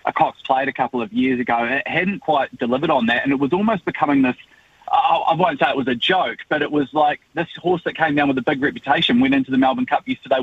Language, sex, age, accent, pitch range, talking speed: English, male, 20-39, Australian, 125-175 Hz, 270 wpm